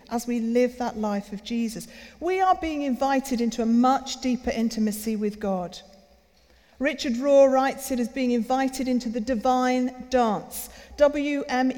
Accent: British